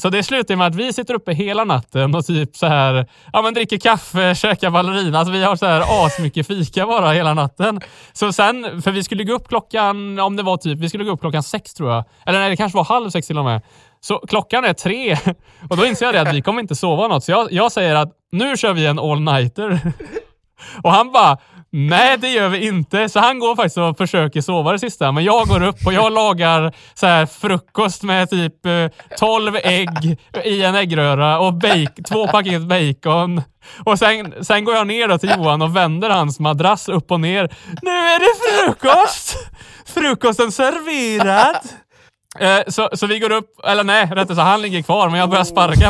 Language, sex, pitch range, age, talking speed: Swedish, male, 160-215 Hz, 20-39, 215 wpm